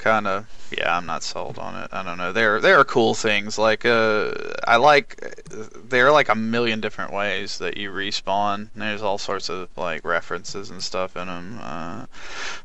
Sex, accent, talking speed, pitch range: male, American, 195 wpm, 100-115 Hz